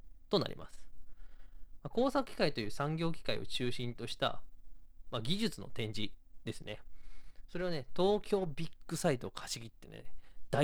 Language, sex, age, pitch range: Japanese, male, 20-39, 110-170 Hz